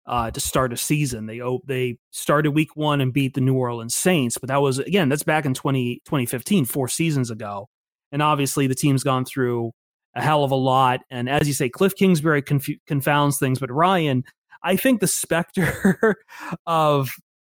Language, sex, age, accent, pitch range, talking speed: English, male, 30-49, American, 130-155 Hz, 190 wpm